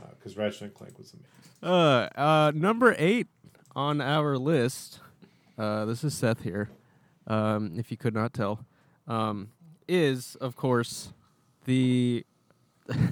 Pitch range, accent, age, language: 110-155 Hz, American, 20-39, English